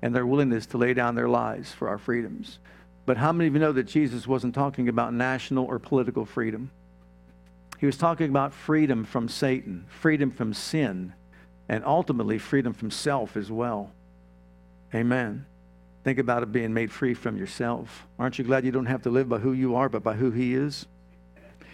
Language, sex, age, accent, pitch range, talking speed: English, male, 50-69, American, 110-155 Hz, 190 wpm